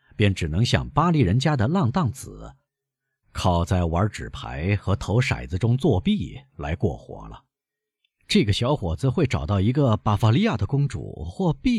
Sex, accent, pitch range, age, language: male, native, 85-135 Hz, 50-69, Chinese